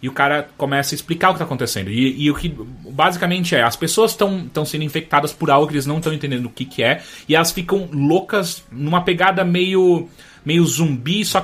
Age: 30-49